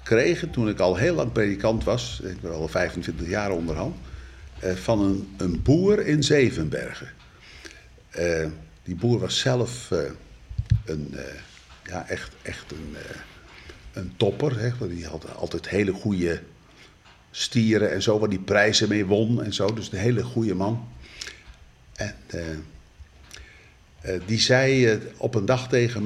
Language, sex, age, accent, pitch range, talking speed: Dutch, male, 50-69, Dutch, 85-120 Hz, 155 wpm